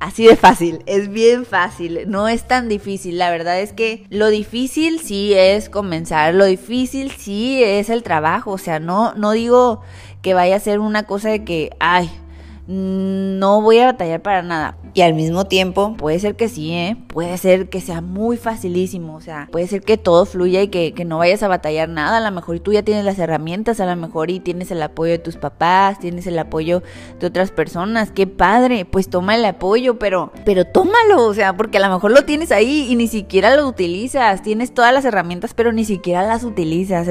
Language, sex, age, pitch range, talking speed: Spanish, female, 20-39, 175-215 Hz, 210 wpm